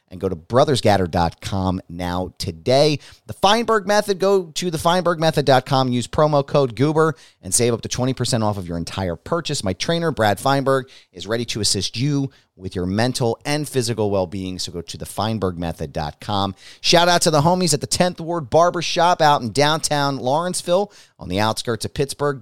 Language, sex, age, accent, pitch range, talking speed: English, male, 30-49, American, 100-150 Hz, 180 wpm